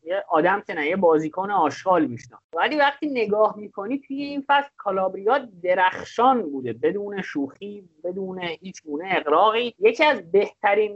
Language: Persian